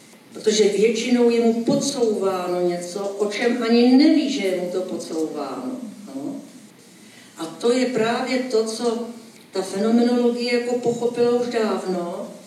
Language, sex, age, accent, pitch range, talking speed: Czech, female, 50-69, native, 200-245 Hz, 135 wpm